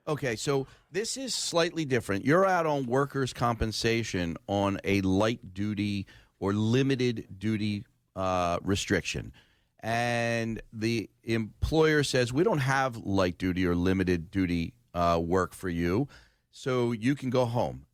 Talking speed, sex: 135 wpm, male